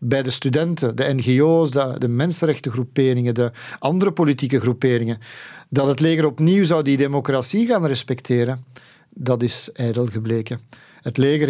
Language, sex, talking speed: Dutch, male, 135 wpm